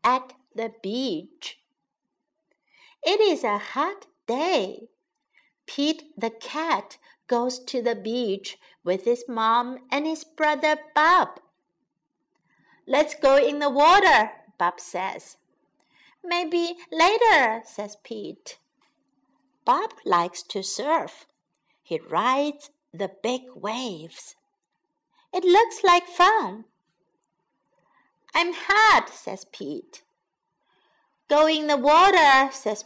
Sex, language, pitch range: female, Chinese, 245-370 Hz